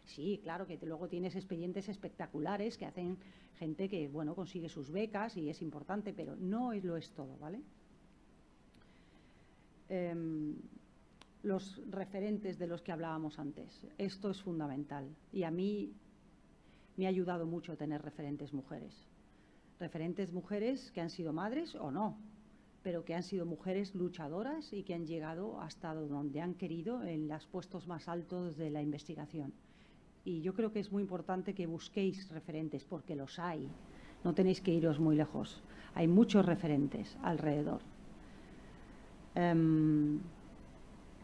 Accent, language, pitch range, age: Spanish, Spanish, 160-190 Hz, 40-59